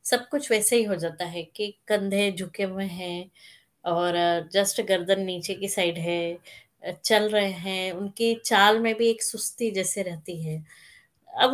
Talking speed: 165 wpm